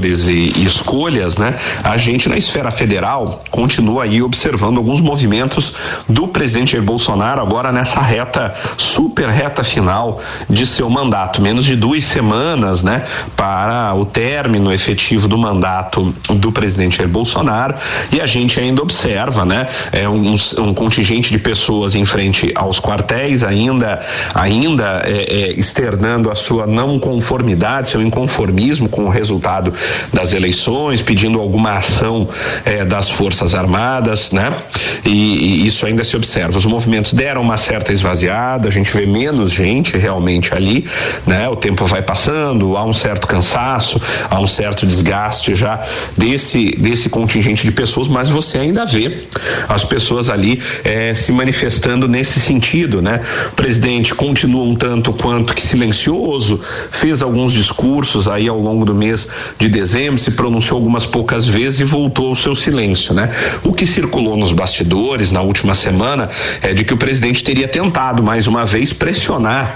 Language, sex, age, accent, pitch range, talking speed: Portuguese, male, 40-59, Brazilian, 100-125 Hz, 155 wpm